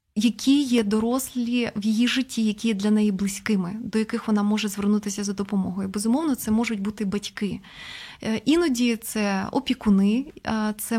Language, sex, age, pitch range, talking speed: Ukrainian, female, 20-39, 210-245 Hz, 145 wpm